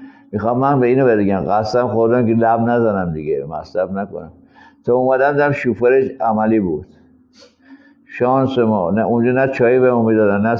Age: 60-79